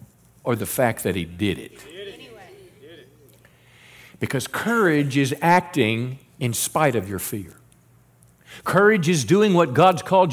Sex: male